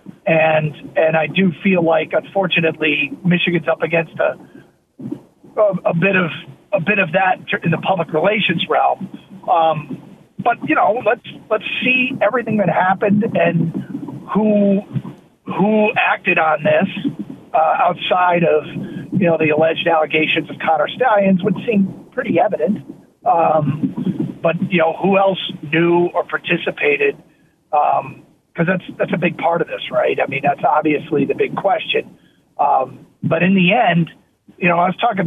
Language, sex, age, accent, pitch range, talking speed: English, male, 40-59, American, 160-200 Hz, 155 wpm